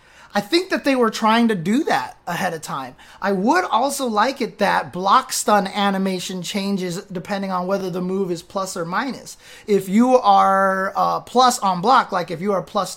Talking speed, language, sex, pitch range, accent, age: 200 wpm, English, male, 190-220 Hz, American, 20-39